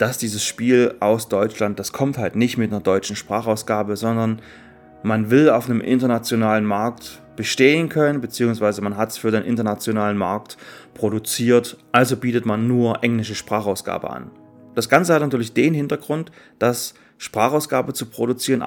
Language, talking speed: German, 155 wpm